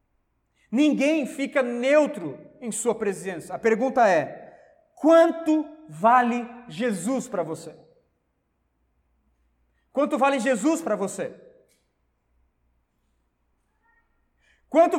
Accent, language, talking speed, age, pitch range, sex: Brazilian, Portuguese, 80 wpm, 40-59, 205-265 Hz, male